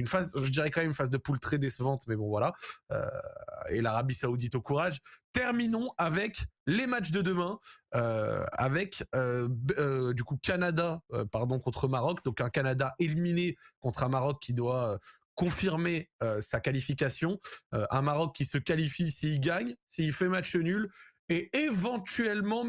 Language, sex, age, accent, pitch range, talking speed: French, male, 20-39, French, 125-165 Hz, 175 wpm